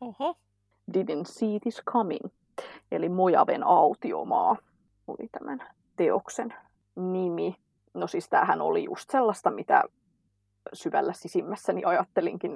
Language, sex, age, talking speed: English, female, 20-39, 100 wpm